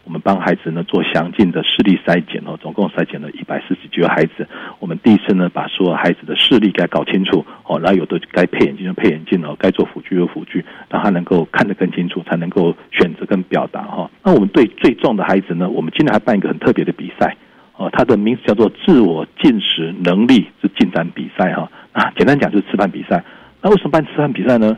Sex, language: male, Chinese